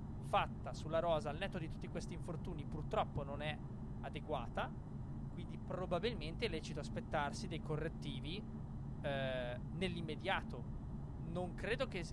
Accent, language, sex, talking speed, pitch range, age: native, Italian, male, 125 wpm, 135-160 Hz, 20-39